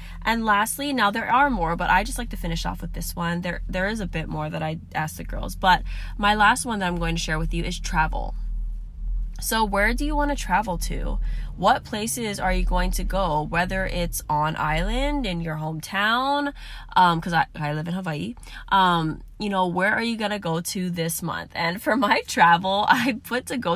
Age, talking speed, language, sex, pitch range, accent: 10-29, 225 wpm, English, female, 165-215 Hz, American